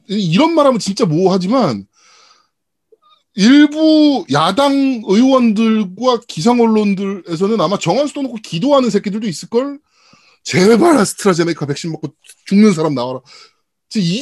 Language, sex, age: Korean, male, 20-39